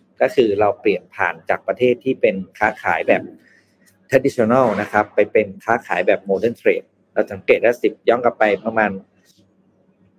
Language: Thai